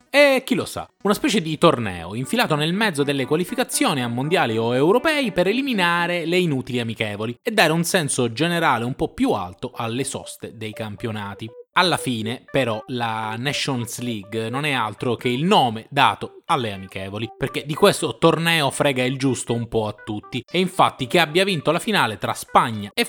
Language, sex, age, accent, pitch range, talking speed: Italian, male, 20-39, native, 110-165 Hz, 185 wpm